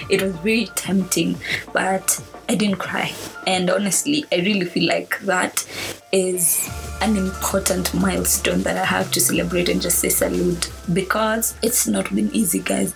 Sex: female